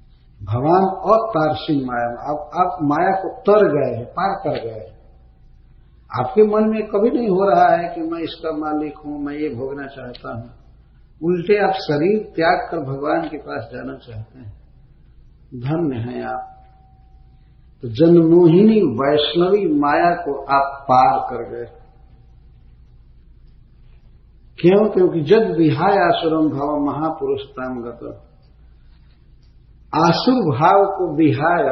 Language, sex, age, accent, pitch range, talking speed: Hindi, male, 50-69, native, 125-175 Hz, 125 wpm